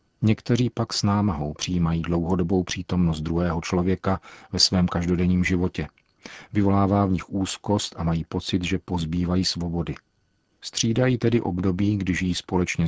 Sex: male